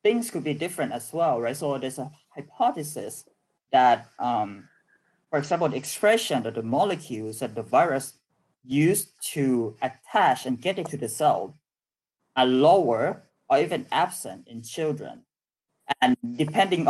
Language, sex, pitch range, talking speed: Hindi, male, 125-175 Hz, 140 wpm